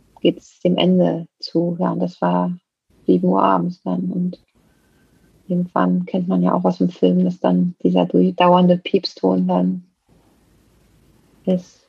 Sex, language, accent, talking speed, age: female, German, German, 145 wpm, 30-49